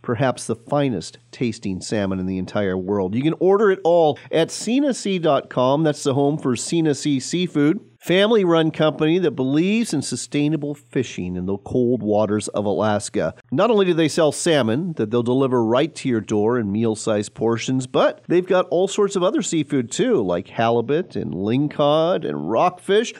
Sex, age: male, 40-59